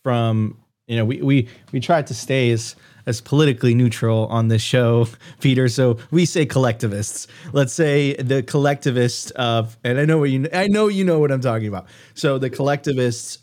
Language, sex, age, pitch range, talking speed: English, male, 30-49, 120-145 Hz, 190 wpm